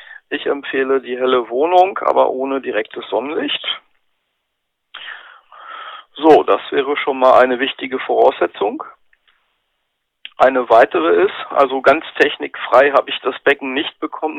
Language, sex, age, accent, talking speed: German, male, 40-59, German, 120 wpm